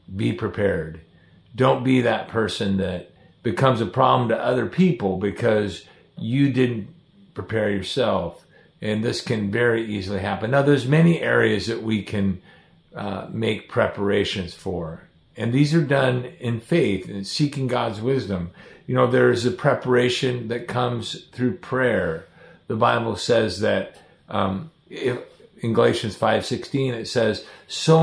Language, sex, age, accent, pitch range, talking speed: English, male, 50-69, American, 105-130 Hz, 145 wpm